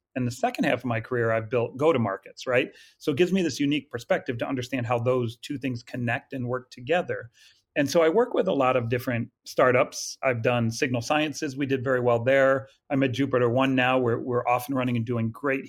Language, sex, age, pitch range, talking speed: English, male, 40-59, 120-140 Hz, 235 wpm